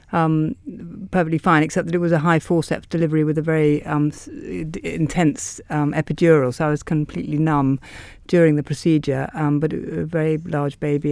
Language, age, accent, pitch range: English, 50-69, British, 150-170 Hz